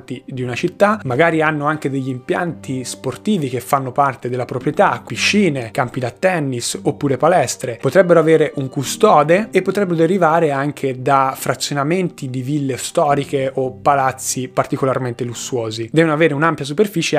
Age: 20-39